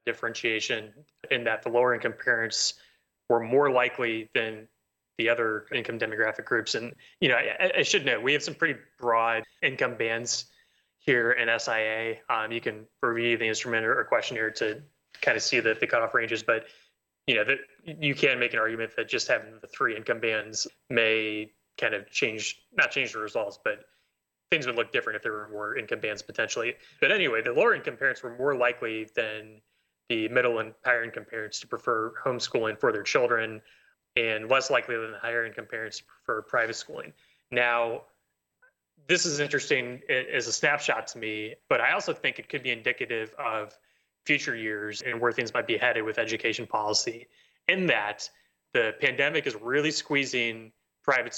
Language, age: English, 20-39